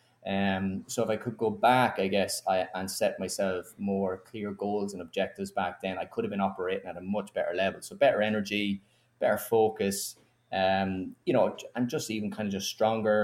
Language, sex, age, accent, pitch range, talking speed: English, male, 20-39, Irish, 95-110 Hz, 205 wpm